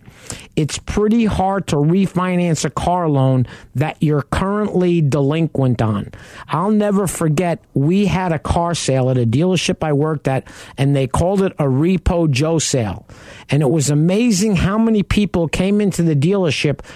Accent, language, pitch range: American, English, 140-185 Hz